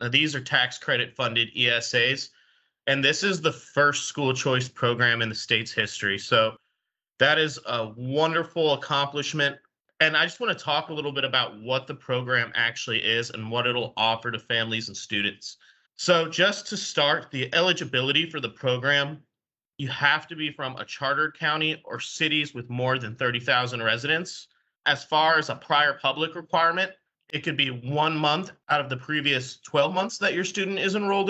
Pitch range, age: 130-165 Hz, 30-49